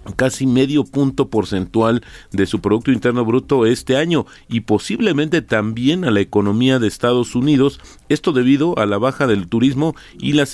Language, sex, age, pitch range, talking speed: Spanish, male, 40-59, 100-130 Hz, 165 wpm